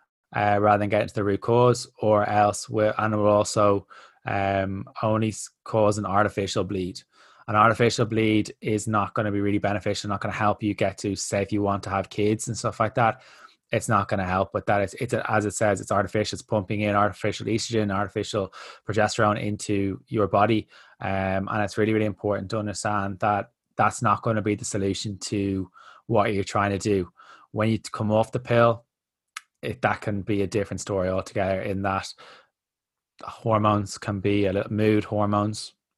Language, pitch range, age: English, 100-110 Hz, 20-39